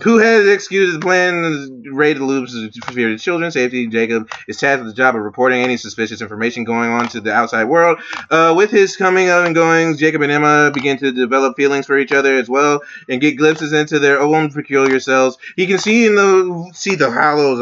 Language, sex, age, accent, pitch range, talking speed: English, male, 20-39, American, 150-225 Hz, 220 wpm